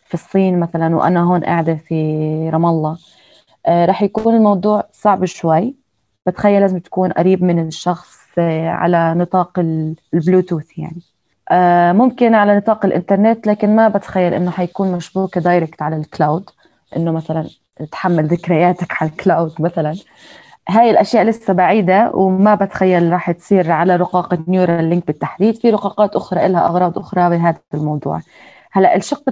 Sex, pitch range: female, 170-210 Hz